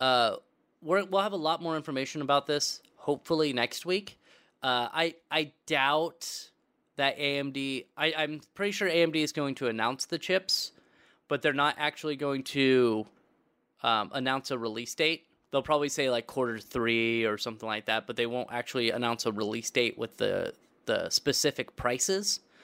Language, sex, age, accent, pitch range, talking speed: English, male, 20-39, American, 120-165 Hz, 165 wpm